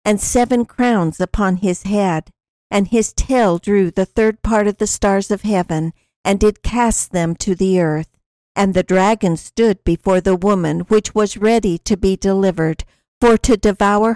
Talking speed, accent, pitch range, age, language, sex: 175 wpm, American, 180-215 Hz, 60-79, English, female